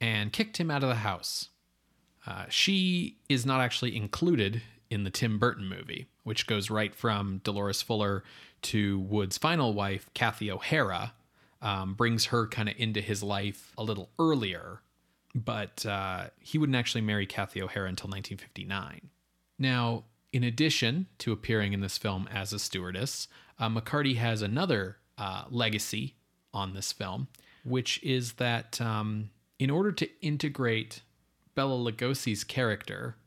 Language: English